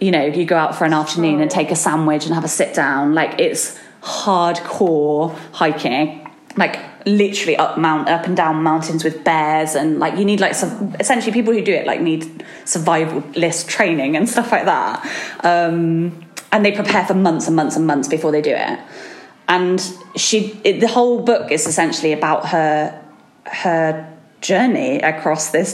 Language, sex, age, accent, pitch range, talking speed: English, female, 20-39, British, 160-220 Hz, 185 wpm